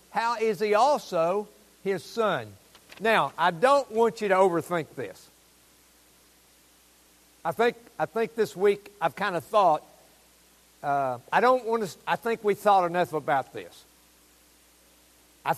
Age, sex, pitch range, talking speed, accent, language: 60-79, male, 140-225 Hz, 145 wpm, American, English